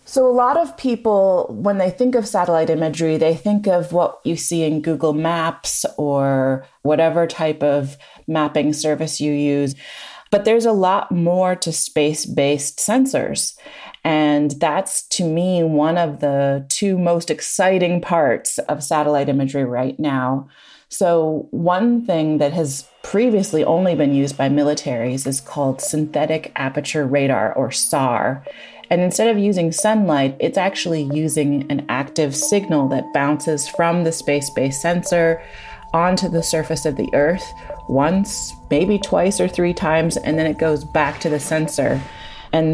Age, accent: 30-49, American